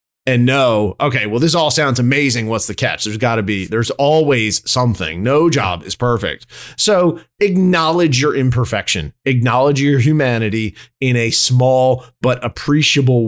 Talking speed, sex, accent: 155 wpm, male, American